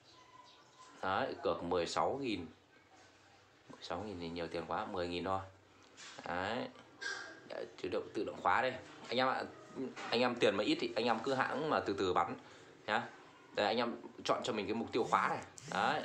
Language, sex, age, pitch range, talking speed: Vietnamese, male, 20-39, 95-130 Hz, 180 wpm